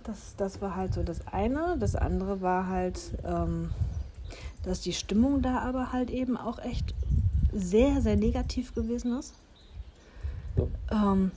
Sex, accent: female, German